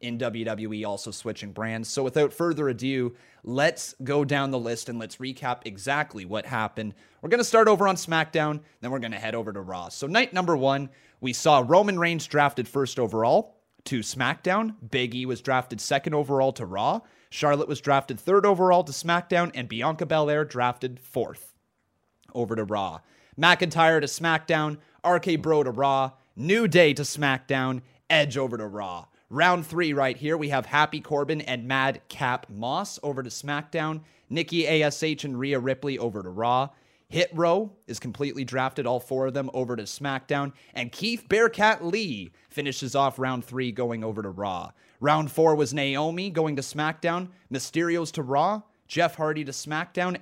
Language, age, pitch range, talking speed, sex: English, 30-49, 125-160 Hz, 175 wpm, male